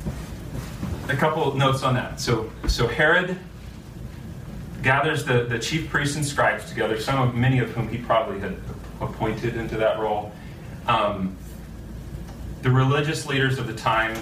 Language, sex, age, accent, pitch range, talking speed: English, male, 40-59, American, 95-130 Hz, 150 wpm